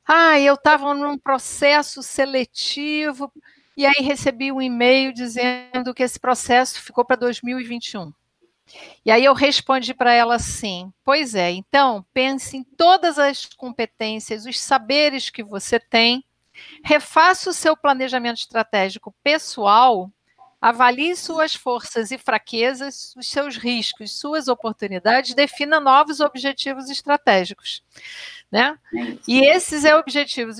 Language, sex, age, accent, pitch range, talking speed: Portuguese, female, 50-69, Brazilian, 235-290 Hz, 120 wpm